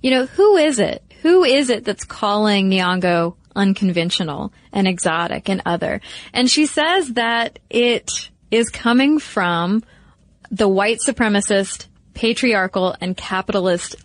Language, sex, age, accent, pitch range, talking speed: English, female, 20-39, American, 190-240 Hz, 130 wpm